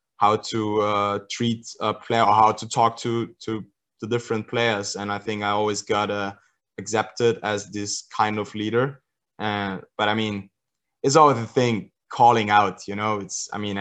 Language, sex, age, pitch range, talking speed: English, male, 20-39, 100-115 Hz, 190 wpm